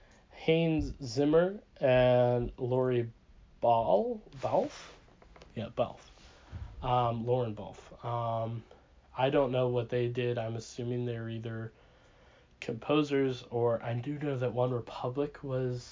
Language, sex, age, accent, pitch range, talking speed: English, male, 20-39, American, 115-145 Hz, 115 wpm